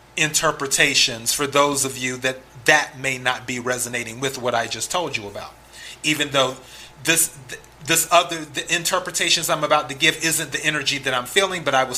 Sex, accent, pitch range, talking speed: male, American, 130-165 Hz, 190 wpm